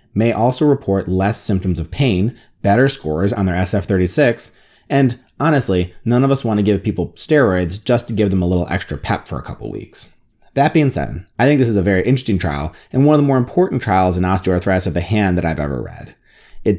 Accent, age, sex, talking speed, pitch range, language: American, 30-49, male, 220 wpm, 95-125 Hz, English